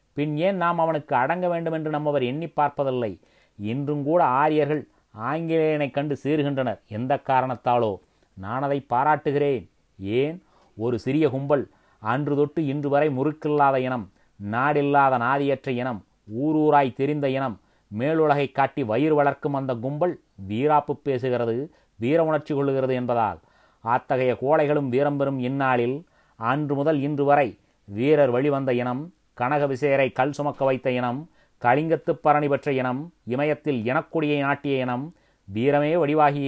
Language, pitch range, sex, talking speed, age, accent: Tamil, 125-150 Hz, male, 115 wpm, 30-49, native